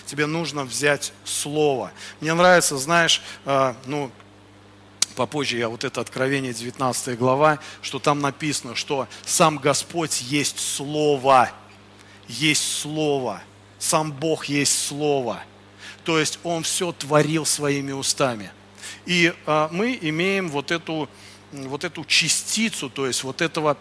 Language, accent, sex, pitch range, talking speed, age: Russian, native, male, 125-160 Hz, 120 wpm, 40-59